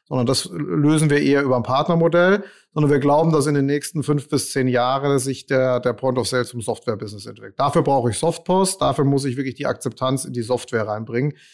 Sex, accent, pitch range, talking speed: male, German, 125-155 Hz, 220 wpm